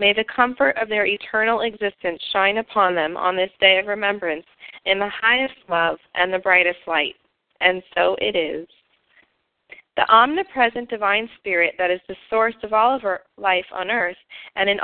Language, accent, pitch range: English, American, 185-230 Hz